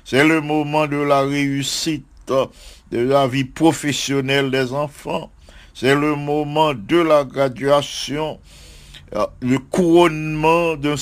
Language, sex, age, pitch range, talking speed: English, male, 60-79, 120-150 Hz, 115 wpm